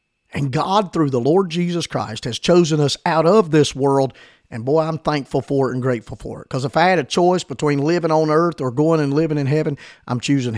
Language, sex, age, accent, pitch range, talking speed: English, male, 50-69, American, 125-160 Hz, 240 wpm